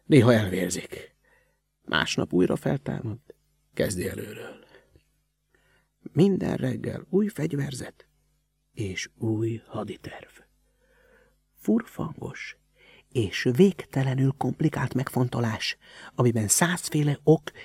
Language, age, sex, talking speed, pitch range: Hungarian, 60-79, male, 75 wpm, 120-180 Hz